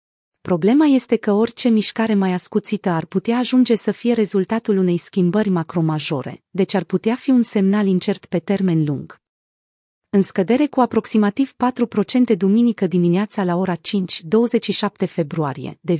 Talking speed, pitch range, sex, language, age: 150 wpm, 180-220 Hz, female, Romanian, 30-49